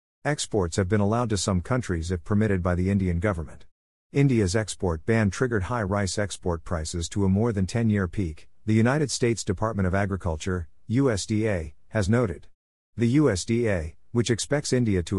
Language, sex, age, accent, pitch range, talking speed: English, male, 50-69, American, 90-115 Hz, 165 wpm